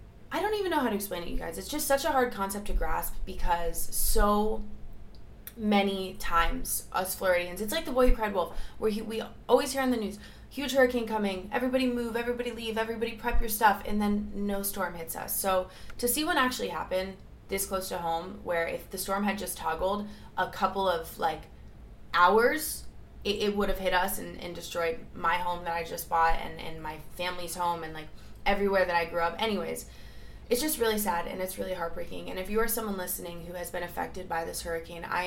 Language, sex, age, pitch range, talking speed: English, female, 20-39, 170-215 Hz, 220 wpm